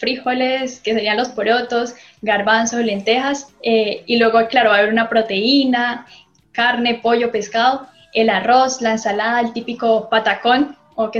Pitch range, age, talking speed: 220-250 Hz, 10-29, 155 wpm